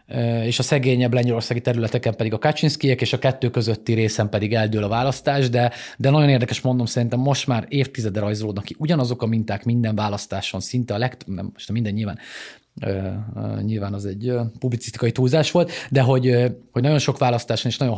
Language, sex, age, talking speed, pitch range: Hungarian, male, 30-49, 195 wpm, 115-140 Hz